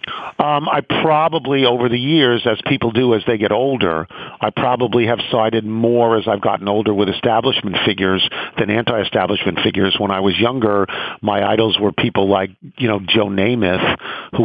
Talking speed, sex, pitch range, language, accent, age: 175 wpm, male, 95-115 Hz, English, American, 50-69